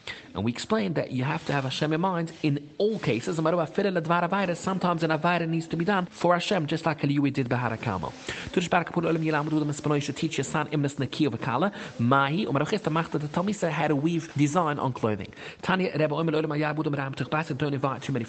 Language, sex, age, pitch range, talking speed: English, male, 30-49, 130-165 Hz, 140 wpm